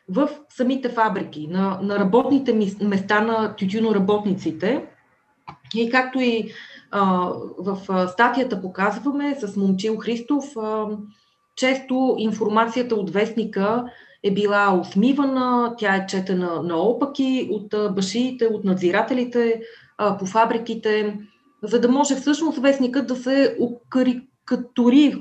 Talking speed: 110 wpm